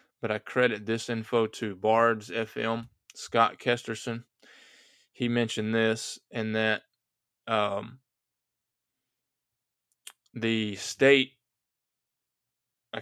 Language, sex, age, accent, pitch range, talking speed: English, male, 20-39, American, 110-120 Hz, 90 wpm